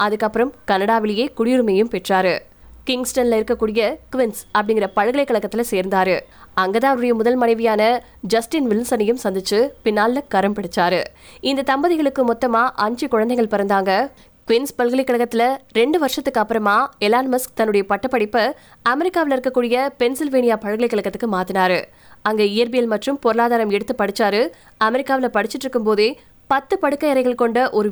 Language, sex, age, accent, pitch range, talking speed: Tamil, female, 20-39, native, 215-265 Hz, 60 wpm